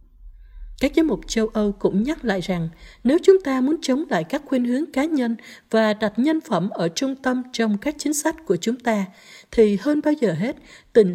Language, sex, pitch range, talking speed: Vietnamese, female, 185-255 Hz, 215 wpm